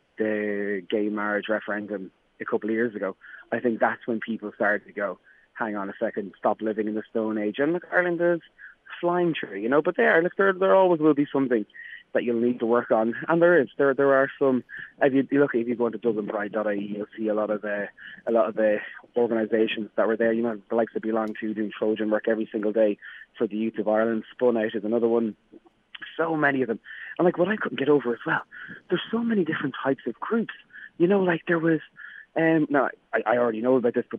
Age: 20-39